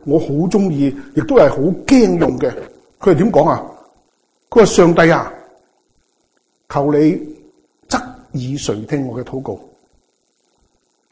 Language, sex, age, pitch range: Chinese, male, 50-69, 145-230 Hz